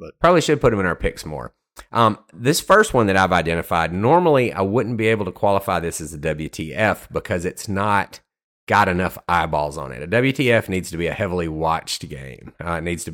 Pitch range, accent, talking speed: 85-115 Hz, American, 220 wpm